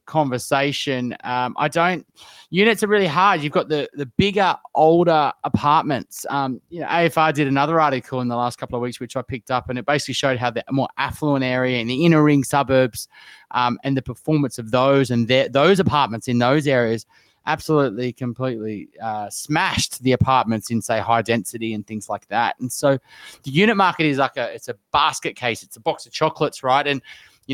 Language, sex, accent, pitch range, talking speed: English, male, Australian, 125-155 Hz, 205 wpm